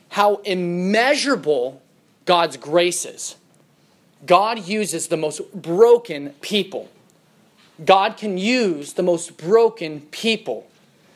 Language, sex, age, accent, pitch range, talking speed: English, male, 30-49, American, 165-220 Hz, 95 wpm